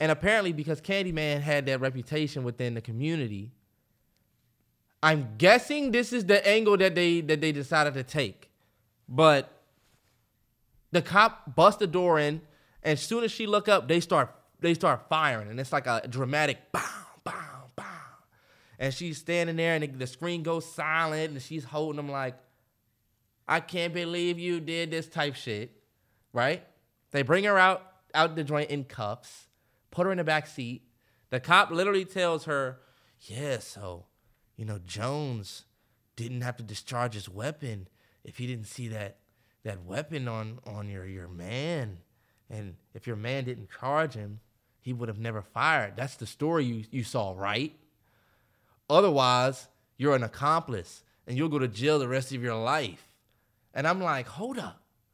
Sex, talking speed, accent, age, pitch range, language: male, 170 wpm, American, 20-39, 115-160 Hz, English